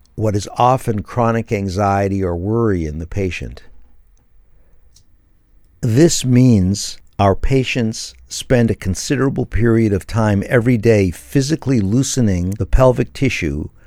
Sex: male